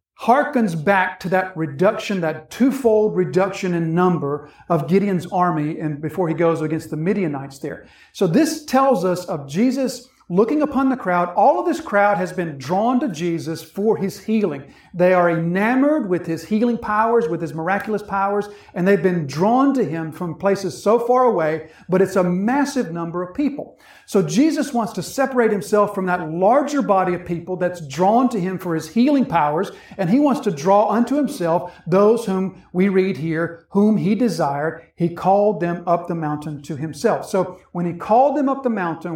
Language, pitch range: English, 170-230 Hz